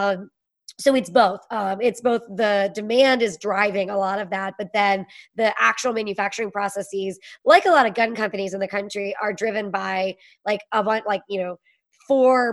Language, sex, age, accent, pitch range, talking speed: English, male, 20-39, American, 200-230 Hz, 185 wpm